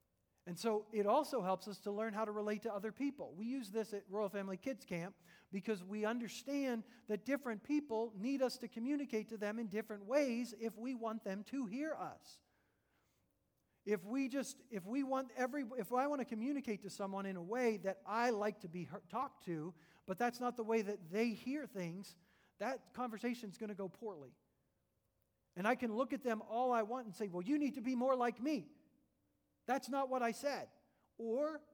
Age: 40-59